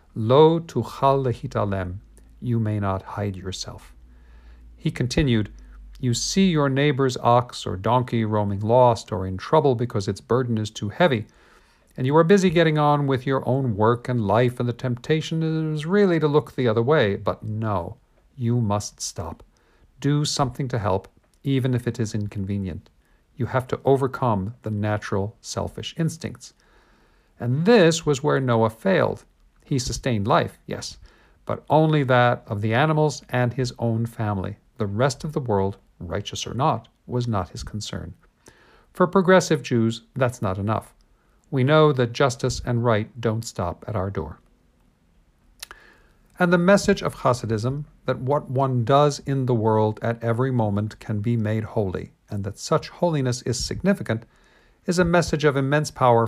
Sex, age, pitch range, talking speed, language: male, 50-69, 105-140 Hz, 165 wpm, English